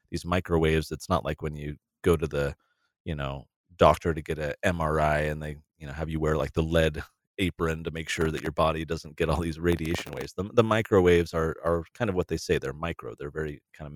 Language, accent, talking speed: English, American, 230 wpm